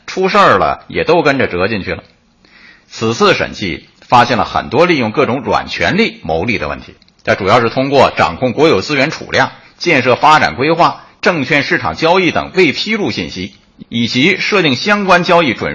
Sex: male